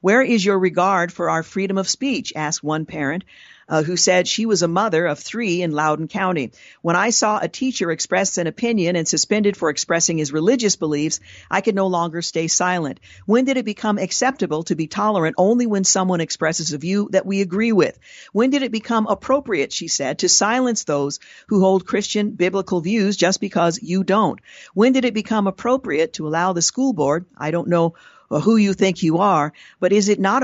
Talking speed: 205 wpm